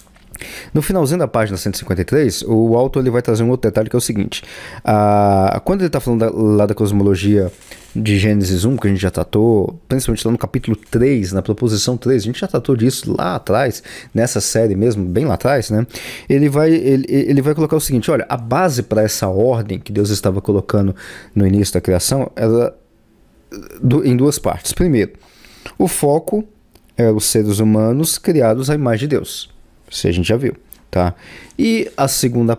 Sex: male